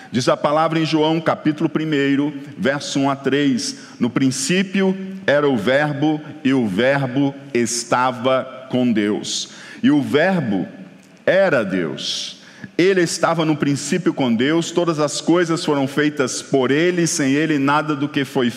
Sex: male